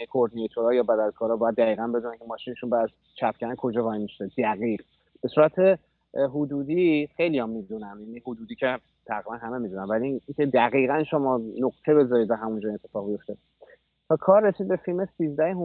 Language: Persian